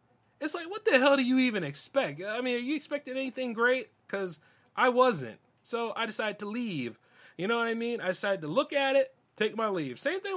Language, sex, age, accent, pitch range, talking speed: English, male, 30-49, American, 145-240 Hz, 230 wpm